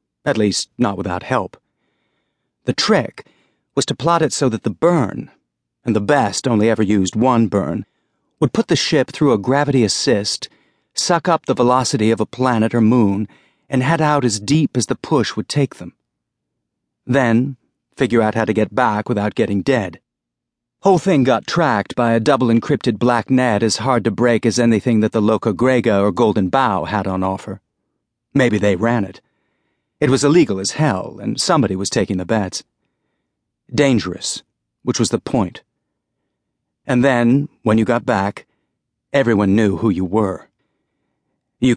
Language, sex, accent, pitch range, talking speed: English, male, American, 105-125 Hz, 170 wpm